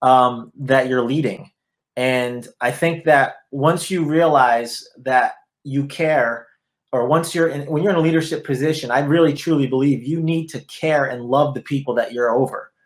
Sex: male